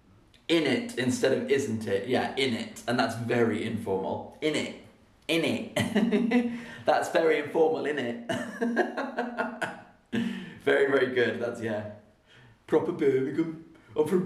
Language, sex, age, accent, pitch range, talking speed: English, male, 30-49, British, 115-180 Hz, 130 wpm